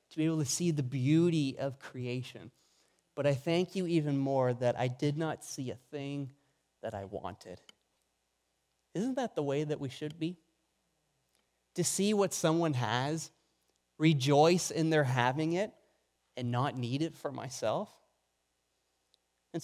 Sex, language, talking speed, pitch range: male, English, 155 wpm, 140-200 Hz